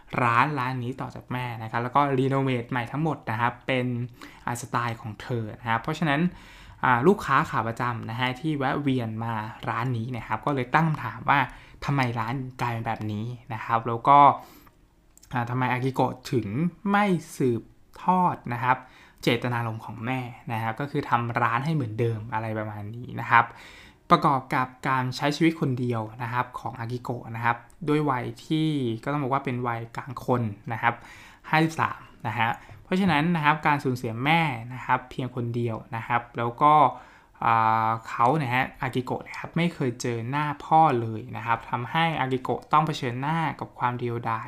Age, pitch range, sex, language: 20-39, 120-145 Hz, male, Thai